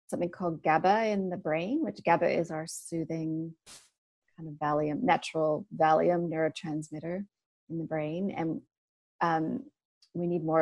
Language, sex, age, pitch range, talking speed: English, female, 30-49, 165-195 Hz, 135 wpm